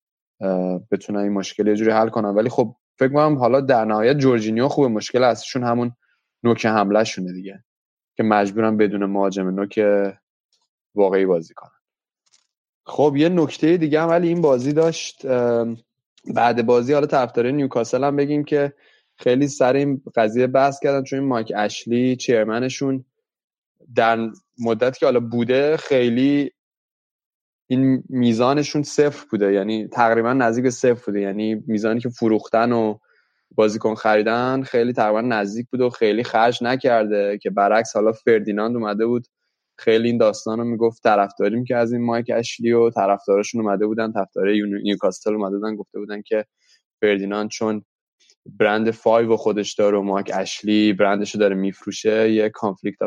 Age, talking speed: 20-39, 145 wpm